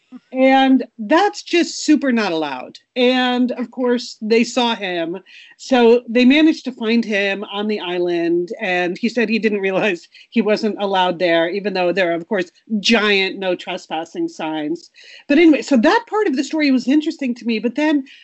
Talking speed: 180 wpm